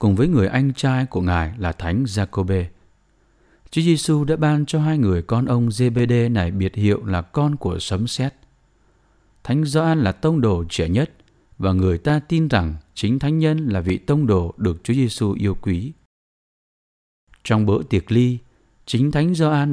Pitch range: 95-140 Hz